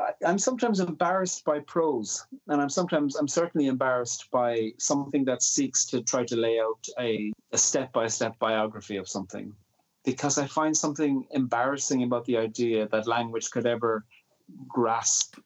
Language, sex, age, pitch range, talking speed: English, male, 30-49, 110-125 Hz, 150 wpm